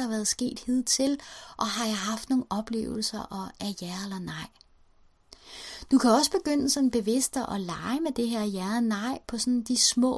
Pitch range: 200-250 Hz